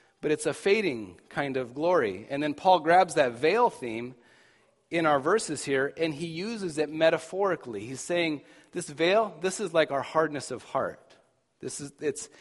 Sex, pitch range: male, 140-185 Hz